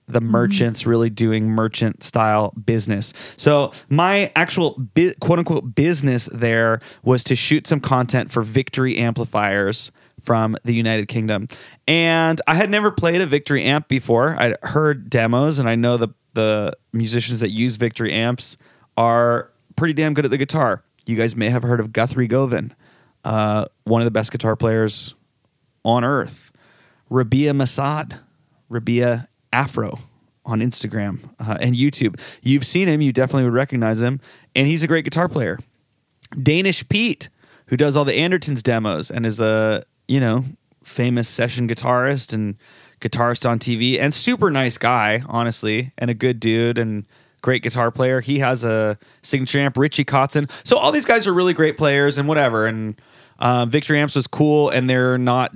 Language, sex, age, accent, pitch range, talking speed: English, male, 30-49, American, 115-145 Hz, 165 wpm